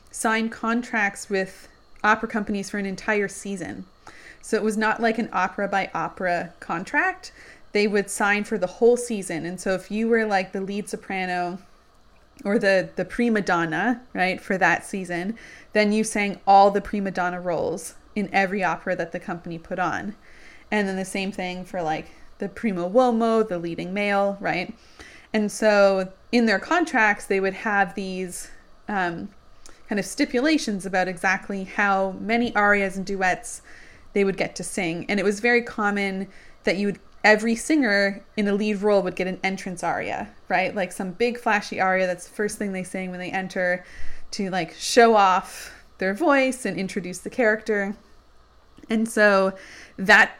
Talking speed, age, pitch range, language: 175 wpm, 20-39, 185-215 Hz, English